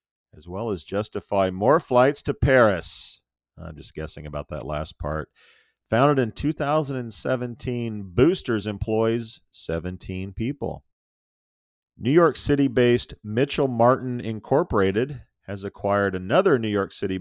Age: 40-59